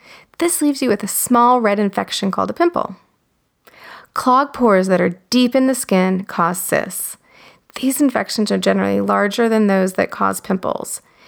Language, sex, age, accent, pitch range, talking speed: English, female, 30-49, American, 190-250 Hz, 165 wpm